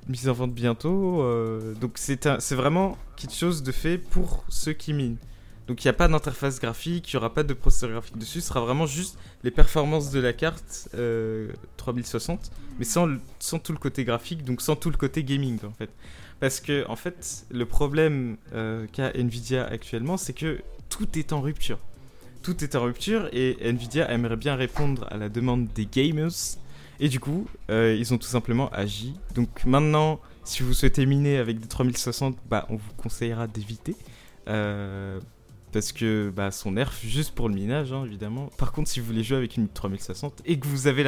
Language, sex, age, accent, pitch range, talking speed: French, male, 20-39, French, 110-140 Hz, 200 wpm